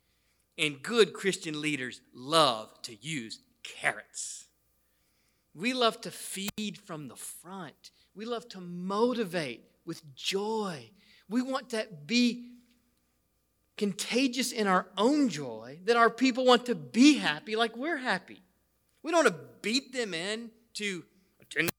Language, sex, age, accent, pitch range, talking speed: English, male, 40-59, American, 165-230 Hz, 135 wpm